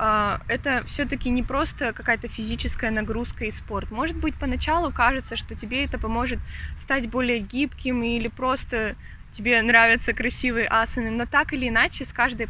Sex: female